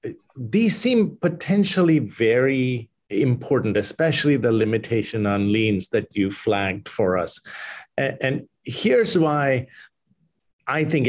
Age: 50-69